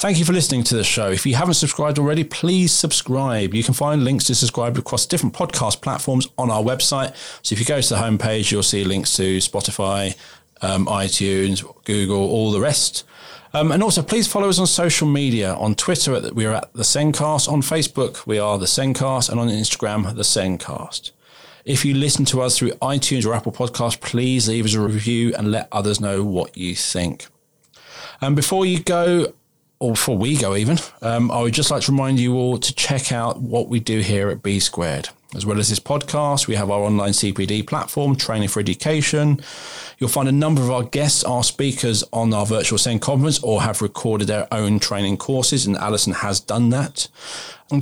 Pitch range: 105-140 Hz